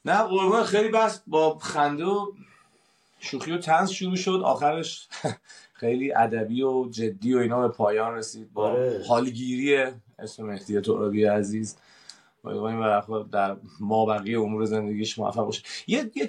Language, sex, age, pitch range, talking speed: Persian, male, 30-49, 110-160 Hz, 140 wpm